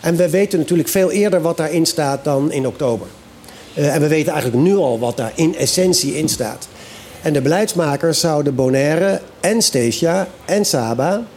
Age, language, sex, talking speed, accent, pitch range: 50-69, Dutch, male, 180 wpm, Dutch, 135-170 Hz